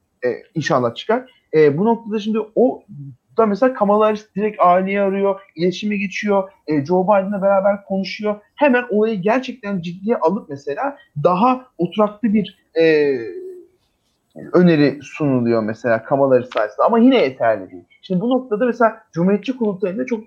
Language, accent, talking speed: Turkish, native, 140 wpm